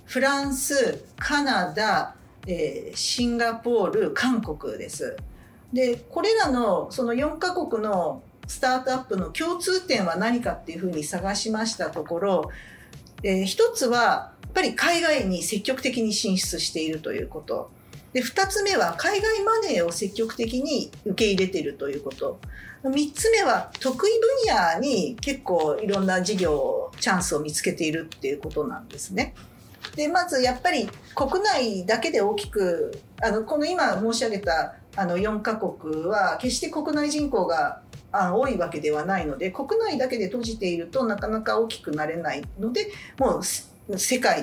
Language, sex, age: Japanese, female, 50-69